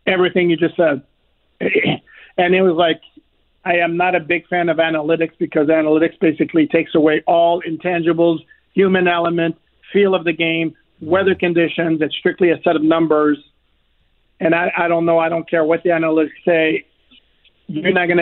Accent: American